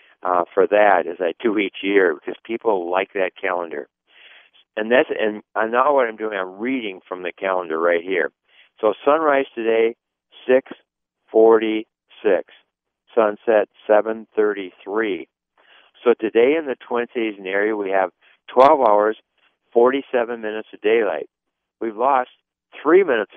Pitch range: 100-125 Hz